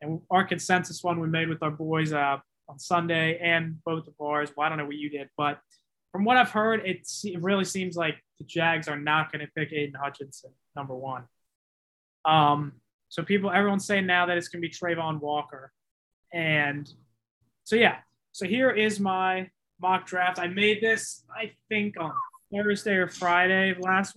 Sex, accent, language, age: male, American, English, 20-39